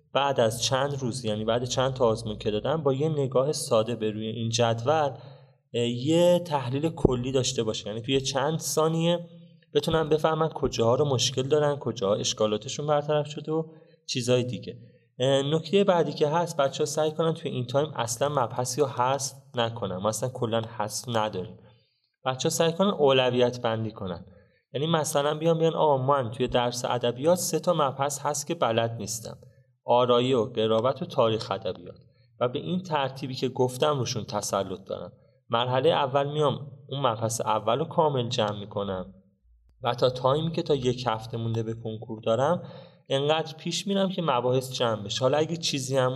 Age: 20-39